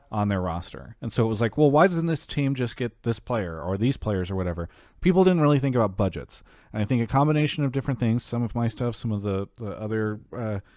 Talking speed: 255 wpm